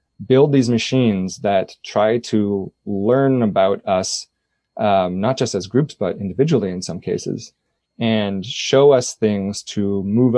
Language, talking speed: English, 145 wpm